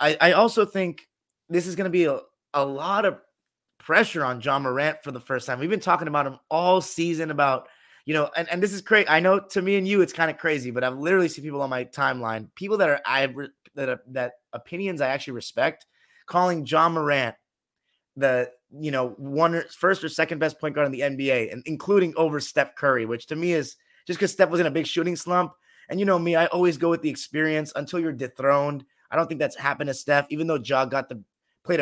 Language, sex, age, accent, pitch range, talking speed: English, male, 30-49, American, 135-180 Hz, 240 wpm